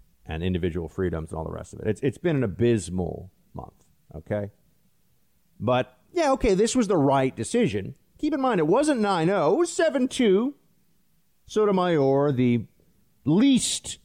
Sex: male